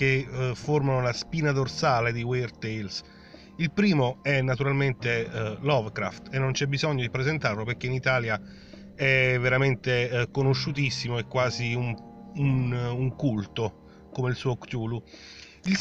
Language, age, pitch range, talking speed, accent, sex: Italian, 40-59, 120-140 Hz, 150 wpm, native, male